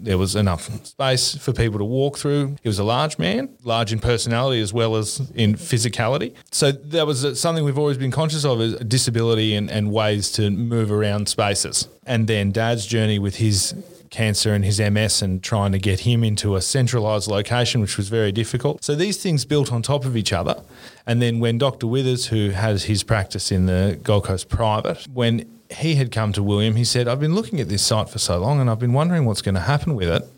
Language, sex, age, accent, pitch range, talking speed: English, male, 30-49, Australian, 100-125 Hz, 225 wpm